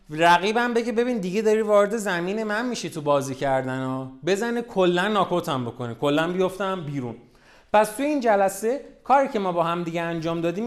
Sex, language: male, Persian